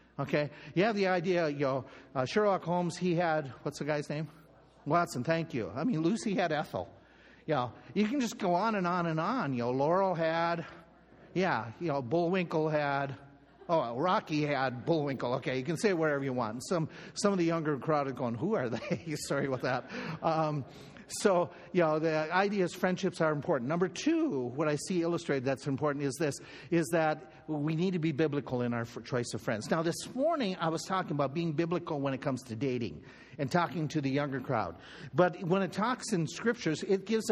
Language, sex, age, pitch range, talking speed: English, male, 50-69, 145-185 Hz, 210 wpm